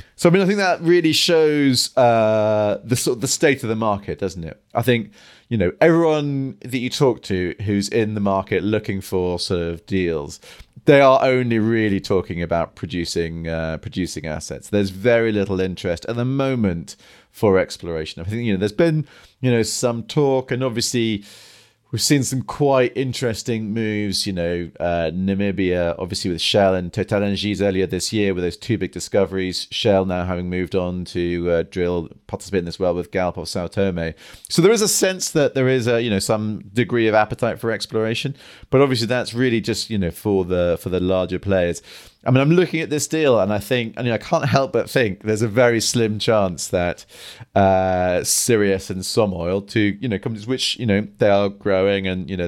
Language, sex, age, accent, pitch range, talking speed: English, male, 30-49, British, 95-120 Hz, 205 wpm